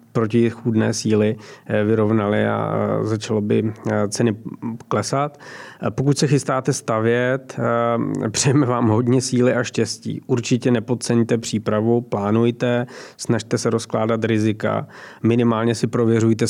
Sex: male